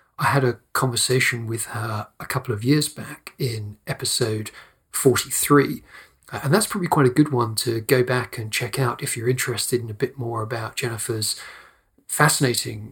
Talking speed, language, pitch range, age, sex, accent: 170 wpm, English, 110-130 Hz, 40-59, male, British